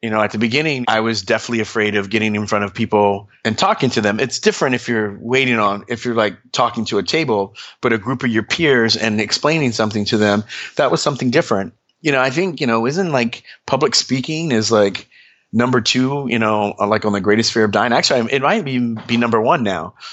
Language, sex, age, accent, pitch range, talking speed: English, male, 30-49, American, 105-125 Hz, 235 wpm